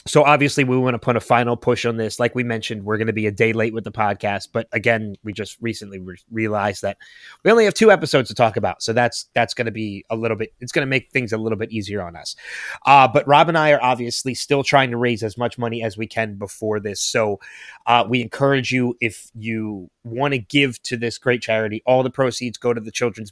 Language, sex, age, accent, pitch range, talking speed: English, male, 20-39, American, 105-120 Hz, 265 wpm